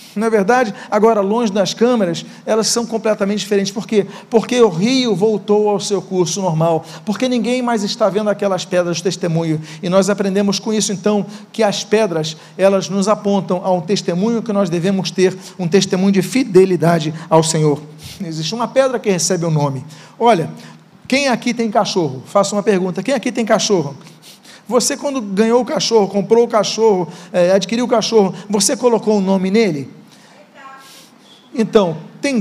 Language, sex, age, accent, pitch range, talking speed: Portuguese, male, 50-69, Brazilian, 195-245 Hz, 170 wpm